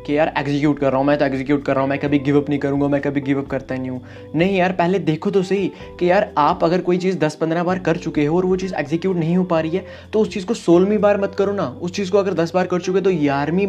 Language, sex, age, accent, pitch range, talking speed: Hindi, male, 20-39, native, 135-175 Hz, 300 wpm